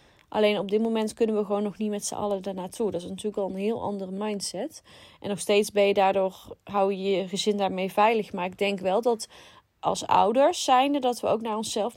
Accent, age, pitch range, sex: Dutch, 20-39, 190-220 Hz, female